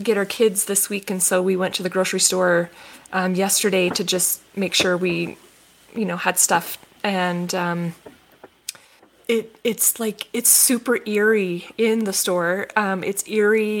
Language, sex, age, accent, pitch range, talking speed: English, female, 20-39, American, 185-210 Hz, 165 wpm